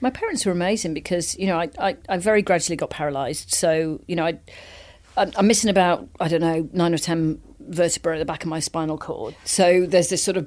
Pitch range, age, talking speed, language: 165-195 Hz, 40-59, 230 wpm, English